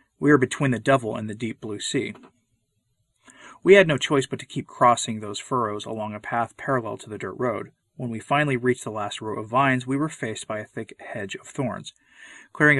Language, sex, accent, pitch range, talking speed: English, male, American, 110-140 Hz, 220 wpm